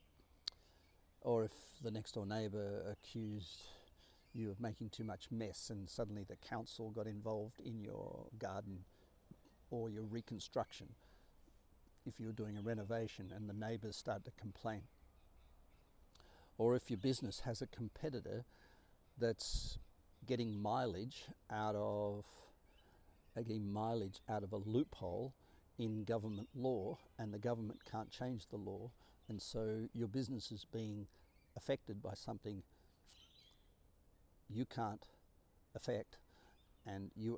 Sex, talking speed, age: male, 125 wpm, 50-69